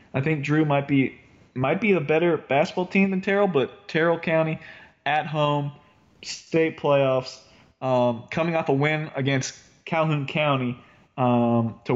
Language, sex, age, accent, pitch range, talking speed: English, male, 20-39, American, 130-155 Hz, 150 wpm